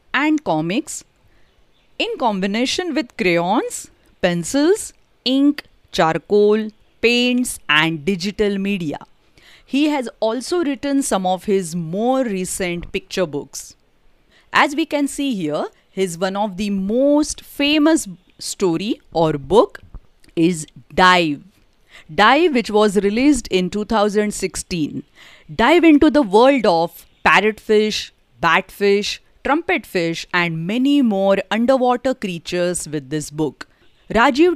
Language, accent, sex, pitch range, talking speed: Hindi, native, female, 175-270 Hz, 115 wpm